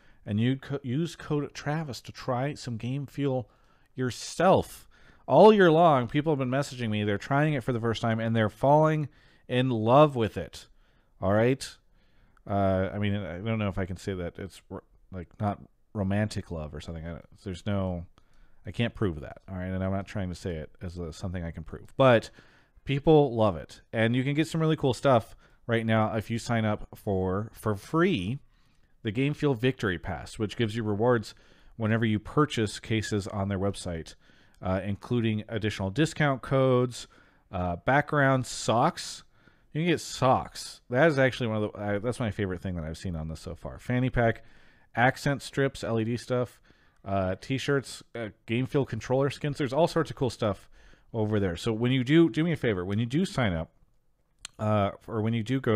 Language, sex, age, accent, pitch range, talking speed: English, male, 40-59, American, 100-130 Hz, 195 wpm